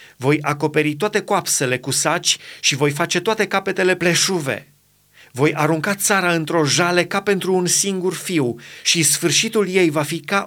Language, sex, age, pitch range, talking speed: Romanian, male, 30-49, 145-180 Hz, 160 wpm